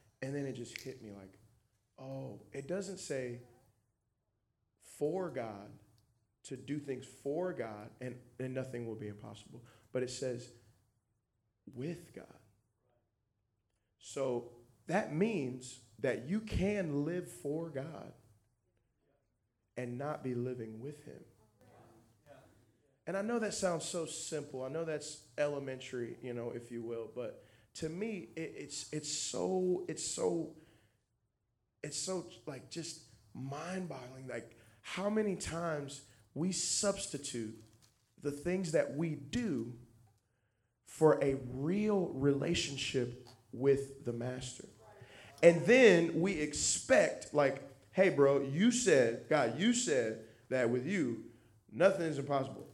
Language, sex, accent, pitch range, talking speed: English, male, American, 115-160 Hz, 125 wpm